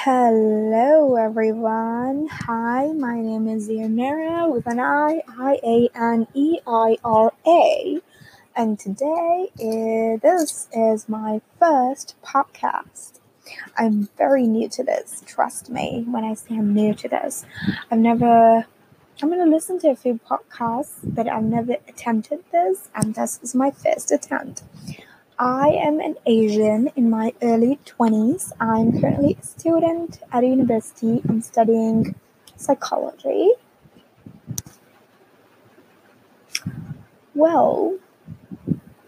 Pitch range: 225-280 Hz